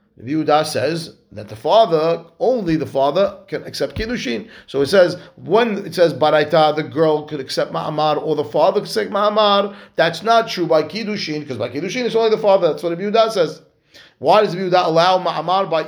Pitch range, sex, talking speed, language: 155-200 Hz, male, 195 wpm, English